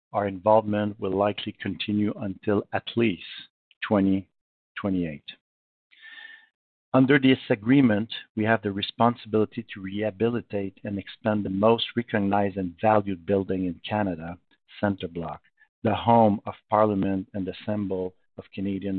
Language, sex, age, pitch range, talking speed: English, male, 50-69, 100-115 Hz, 125 wpm